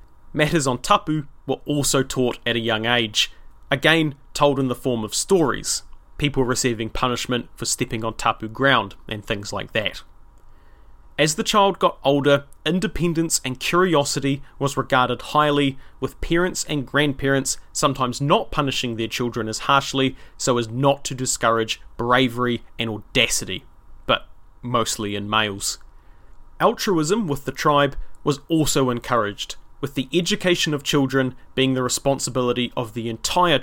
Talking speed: 145 wpm